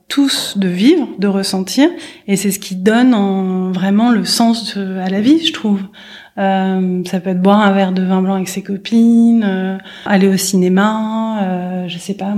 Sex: female